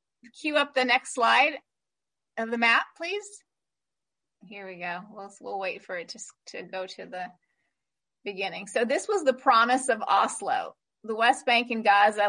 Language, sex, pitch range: English, female, 215-265 Hz